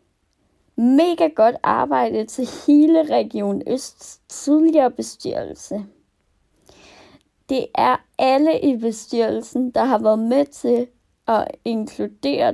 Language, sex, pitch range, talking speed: Danish, female, 220-280 Hz, 100 wpm